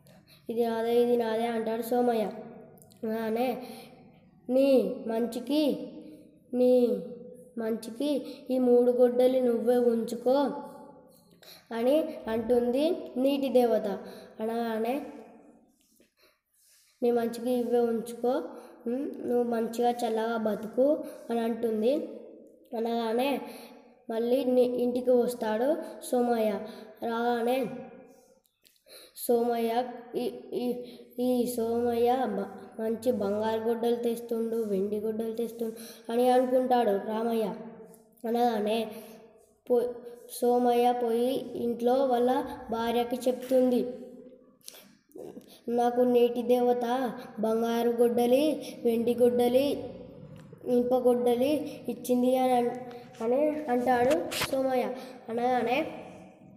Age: 20-39